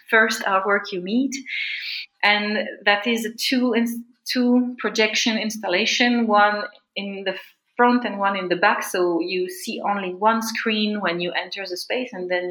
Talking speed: 170 wpm